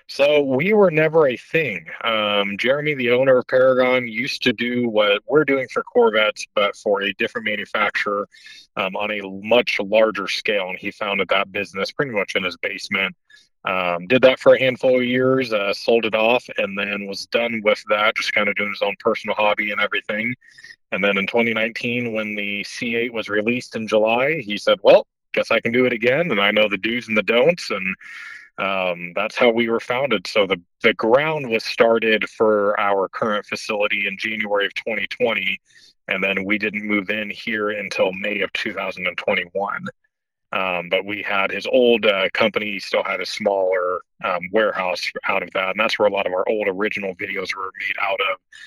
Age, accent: 30-49, American